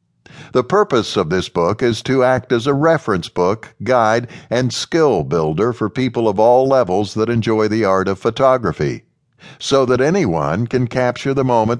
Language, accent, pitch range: English, American, 110-135 Hz